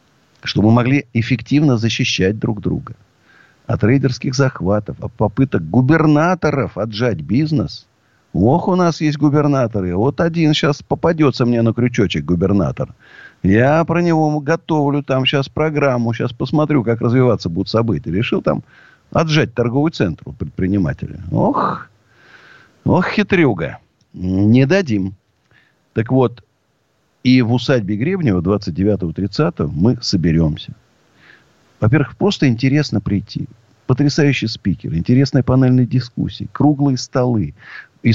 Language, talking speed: Russian, 120 wpm